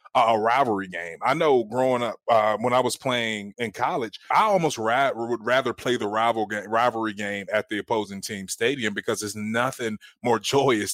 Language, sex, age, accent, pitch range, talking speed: English, male, 20-39, American, 105-120 Hz, 190 wpm